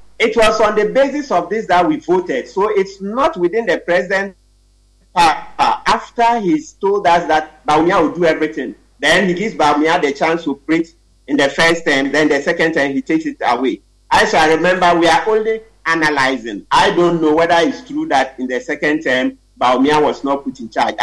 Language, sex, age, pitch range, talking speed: English, male, 50-69, 140-185 Hz, 205 wpm